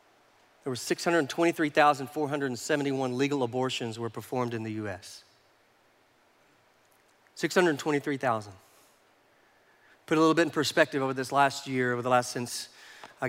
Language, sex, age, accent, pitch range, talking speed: English, male, 40-59, American, 130-160 Hz, 115 wpm